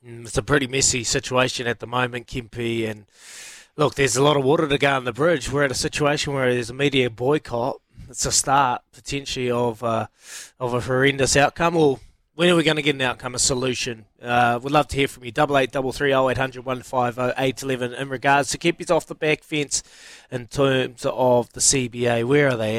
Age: 20-39